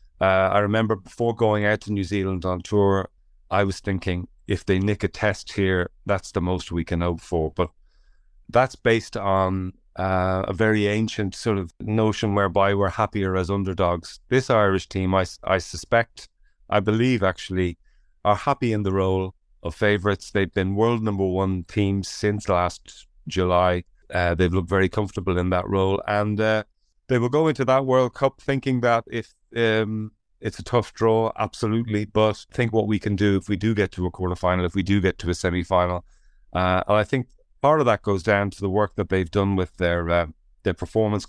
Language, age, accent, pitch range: English, 30-49, Irish, 95-110 Hz